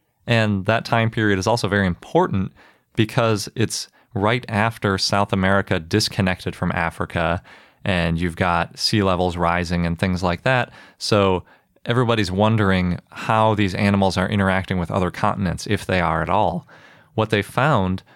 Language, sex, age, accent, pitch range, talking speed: English, male, 30-49, American, 90-110 Hz, 150 wpm